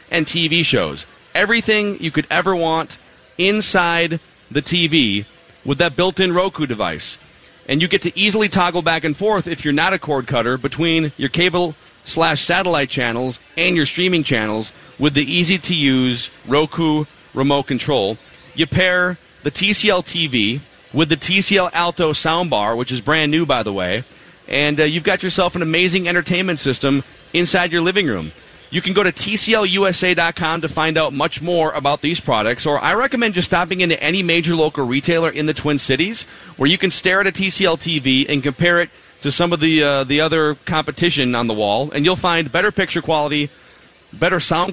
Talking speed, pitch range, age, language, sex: 175 wpm, 140-180 Hz, 40-59, English, male